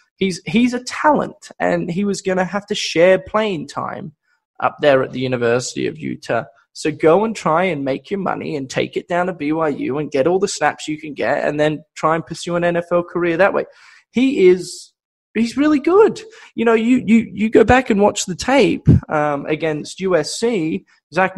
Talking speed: 205 wpm